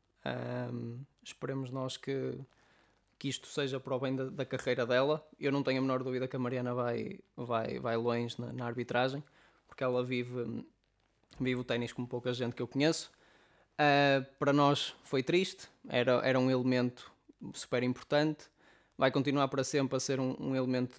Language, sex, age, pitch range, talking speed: English, male, 20-39, 120-135 Hz, 175 wpm